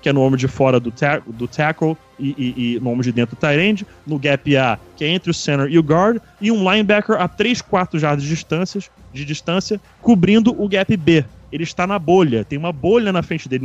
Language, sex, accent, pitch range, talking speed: Portuguese, male, Brazilian, 135-175 Hz, 240 wpm